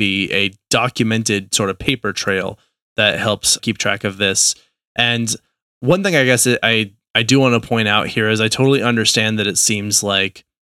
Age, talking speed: 20-39, 190 wpm